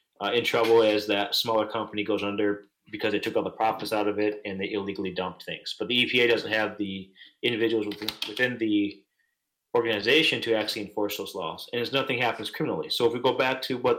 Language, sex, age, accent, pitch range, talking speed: English, male, 30-49, American, 100-115 Hz, 215 wpm